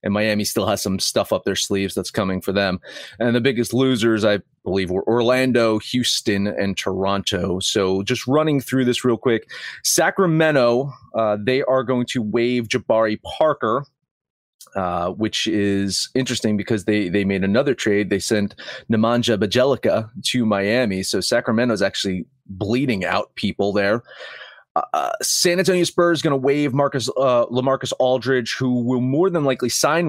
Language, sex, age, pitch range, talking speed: English, male, 30-49, 105-130 Hz, 160 wpm